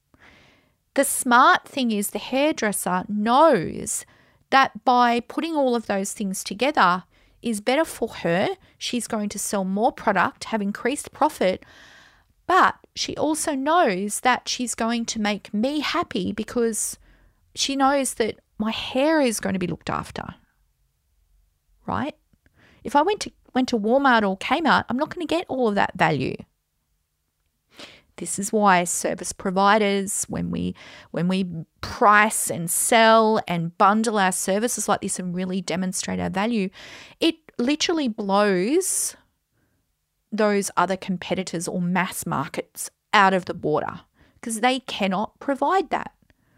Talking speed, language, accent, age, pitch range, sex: 145 wpm, English, Australian, 40-59, 185-255 Hz, female